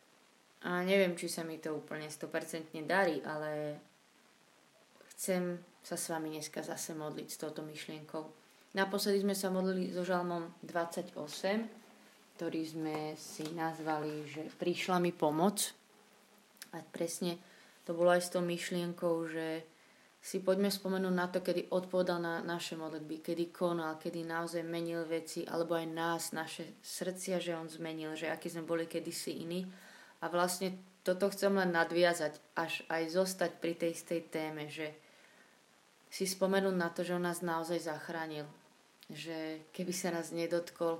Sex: female